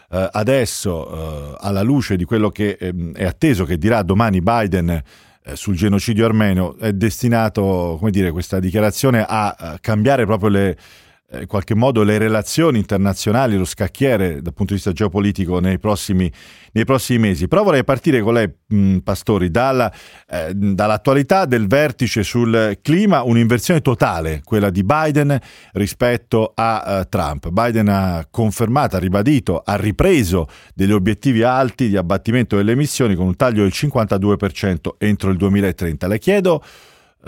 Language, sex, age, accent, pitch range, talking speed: Italian, male, 40-59, native, 95-115 Hz, 140 wpm